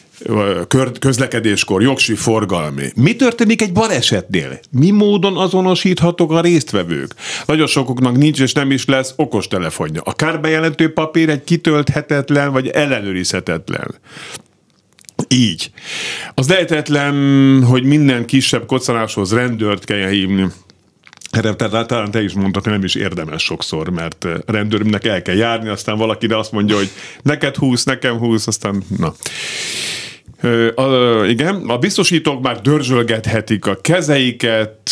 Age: 50-69